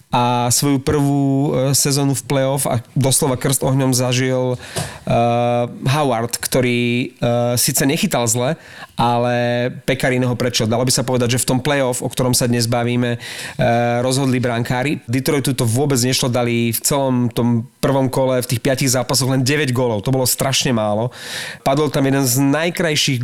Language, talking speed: Slovak, 165 wpm